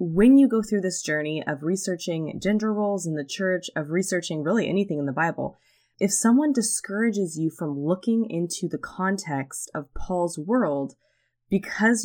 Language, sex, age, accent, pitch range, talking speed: English, female, 20-39, American, 155-200 Hz, 165 wpm